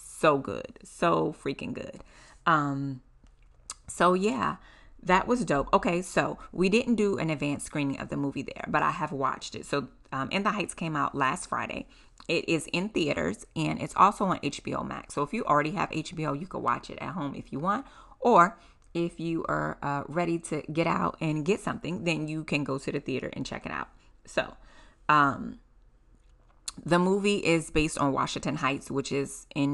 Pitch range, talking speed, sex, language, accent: 140-175 Hz, 195 wpm, female, English, American